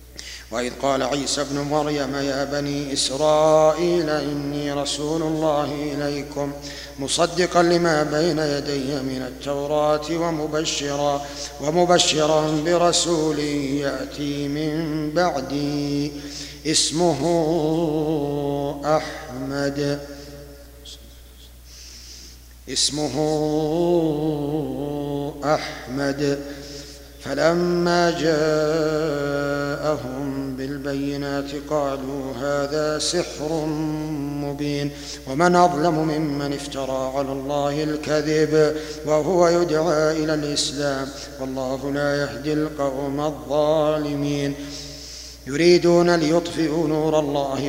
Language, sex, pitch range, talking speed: Arabic, male, 140-155 Hz, 70 wpm